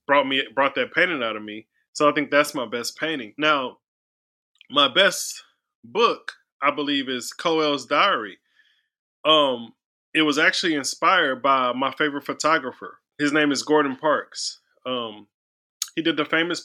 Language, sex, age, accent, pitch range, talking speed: English, male, 20-39, American, 125-155 Hz, 155 wpm